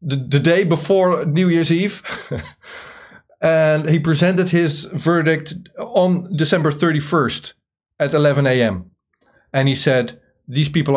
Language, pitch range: Dutch, 135-170 Hz